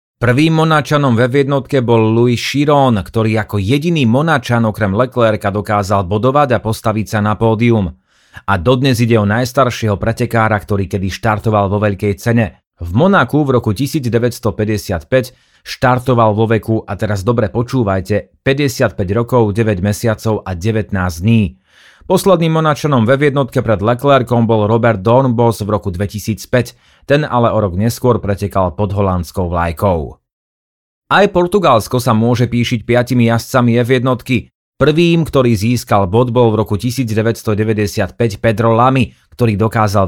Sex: male